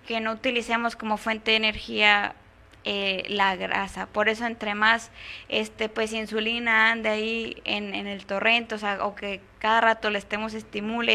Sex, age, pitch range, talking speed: female, 20-39, 210-235 Hz, 170 wpm